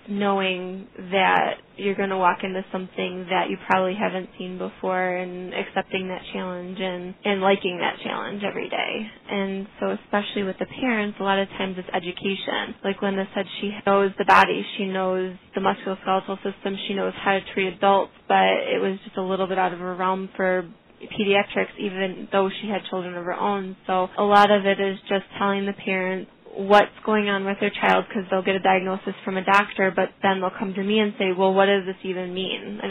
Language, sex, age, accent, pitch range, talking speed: English, female, 20-39, American, 185-200 Hz, 210 wpm